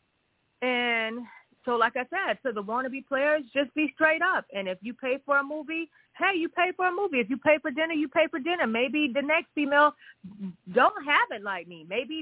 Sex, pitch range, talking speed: female, 230-295 Hz, 225 wpm